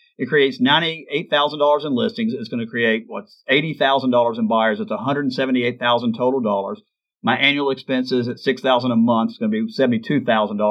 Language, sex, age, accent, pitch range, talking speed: English, male, 50-69, American, 115-165 Hz, 150 wpm